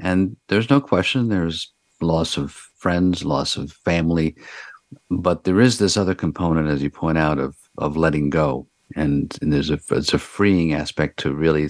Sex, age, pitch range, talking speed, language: male, 50-69, 75-95 Hz, 180 wpm, English